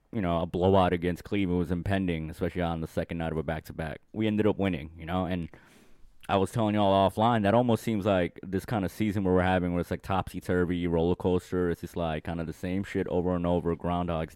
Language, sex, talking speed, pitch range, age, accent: English, male, 240 wpm, 85-105 Hz, 20-39, American